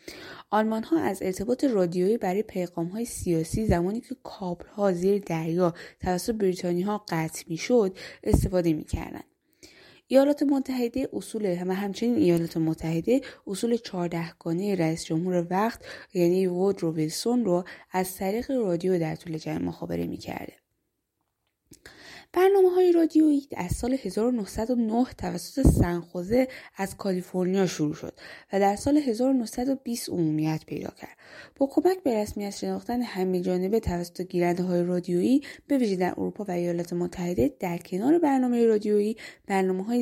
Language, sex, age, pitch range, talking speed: Persian, female, 20-39, 175-240 Hz, 130 wpm